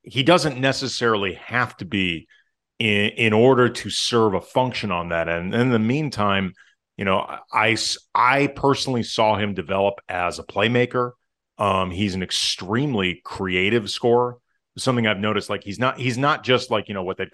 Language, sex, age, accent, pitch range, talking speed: English, male, 30-49, American, 95-120 Hz, 175 wpm